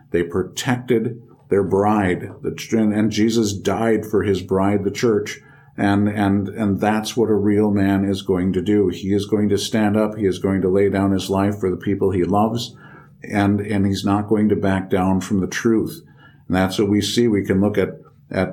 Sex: male